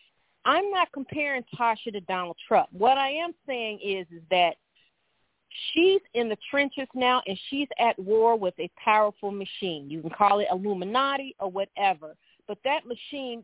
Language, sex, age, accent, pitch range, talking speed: English, female, 40-59, American, 225-295 Hz, 165 wpm